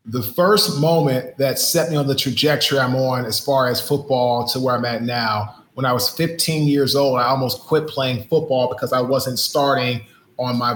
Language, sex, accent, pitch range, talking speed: English, male, American, 120-145 Hz, 205 wpm